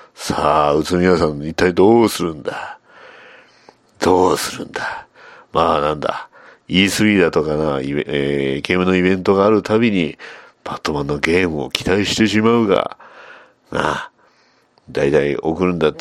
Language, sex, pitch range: Japanese, male, 80-100 Hz